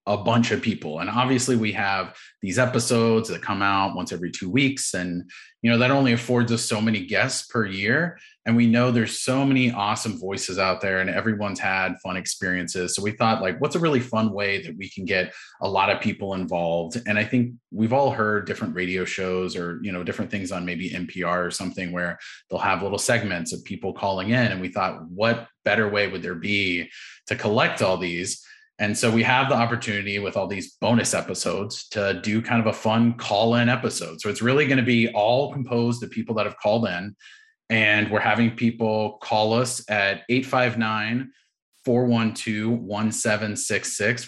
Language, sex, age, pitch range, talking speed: English, male, 30-49, 100-120 Hz, 195 wpm